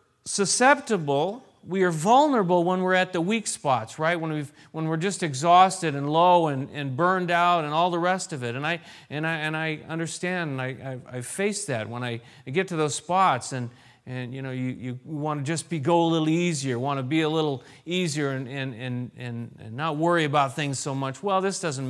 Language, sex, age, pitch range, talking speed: English, male, 40-59, 130-180 Hz, 225 wpm